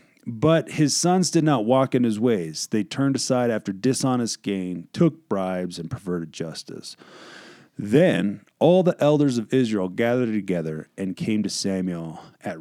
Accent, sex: American, male